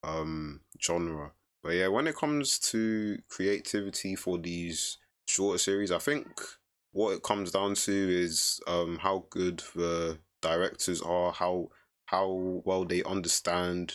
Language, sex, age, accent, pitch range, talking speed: English, male, 20-39, British, 85-90 Hz, 140 wpm